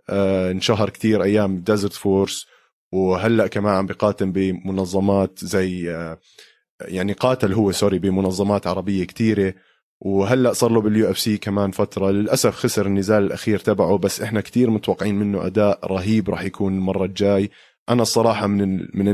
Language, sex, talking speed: Arabic, male, 150 wpm